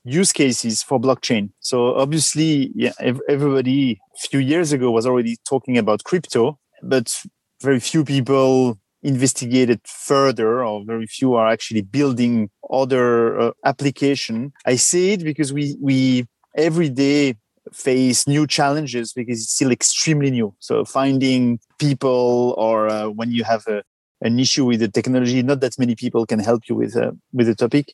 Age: 30-49